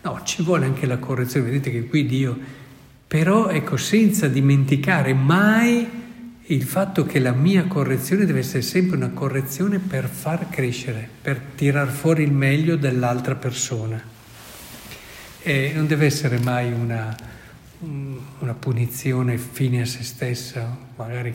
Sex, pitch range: male, 120-150 Hz